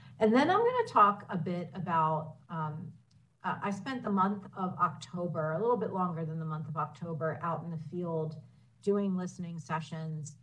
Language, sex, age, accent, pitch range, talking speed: English, female, 40-59, American, 155-180 Hz, 190 wpm